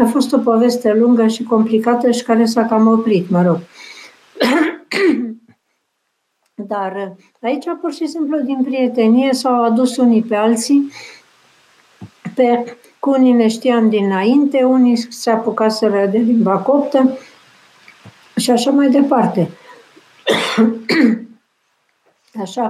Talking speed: 110 wpm